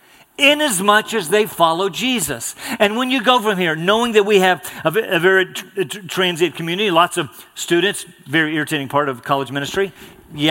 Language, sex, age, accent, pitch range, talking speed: English, male, 50-69, American, 135-210 Hz, 185 wpm